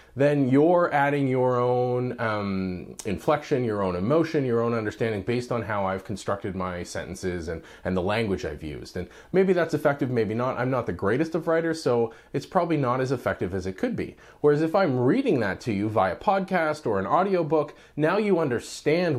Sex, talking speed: male, 195 wpm